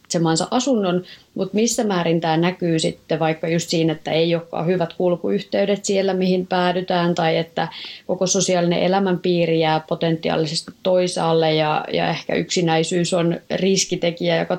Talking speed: 135 wpm